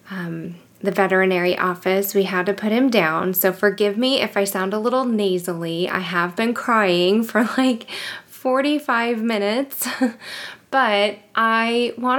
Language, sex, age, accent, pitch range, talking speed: English, female, 20-39, American, 190-235 Hz, 150 wpm